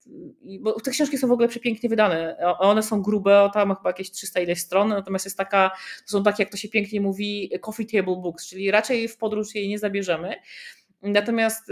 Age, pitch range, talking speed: 30-49, 170-210 Hz, 205 wpm